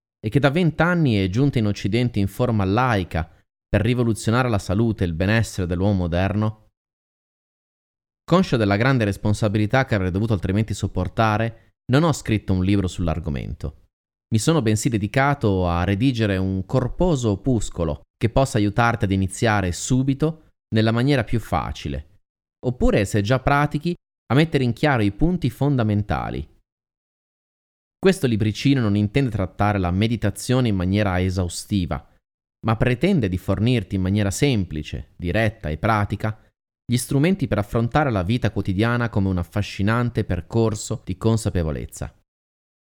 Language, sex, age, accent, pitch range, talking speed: Italian, male, 30-49, native, 95-120 Hz, 135 wpm